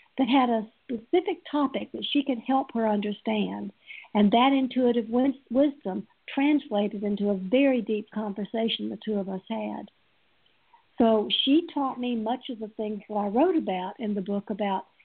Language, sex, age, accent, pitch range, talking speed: English, female, 60-79, American, 210-250 Hz, 170 wpm